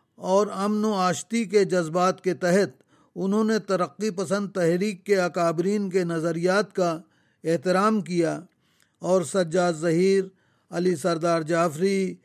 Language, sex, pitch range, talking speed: Urdu, male, 175-205 Hz, 125 wpm